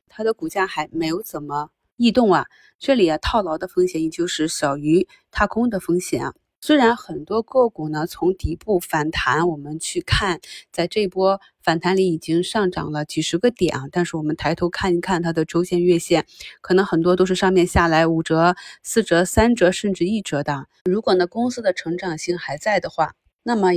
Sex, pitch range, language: female, 160-200 Hz, Chinese